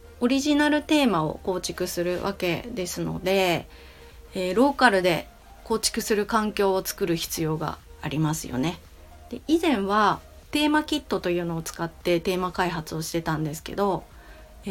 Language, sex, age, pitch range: Japanese, female, 30-49, 160-230 Hz